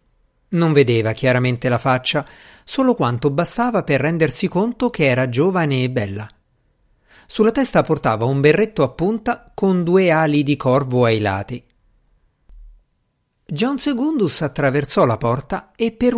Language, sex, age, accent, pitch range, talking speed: Italian, male, 50-69, native, 125-180 Hz, 135 wpm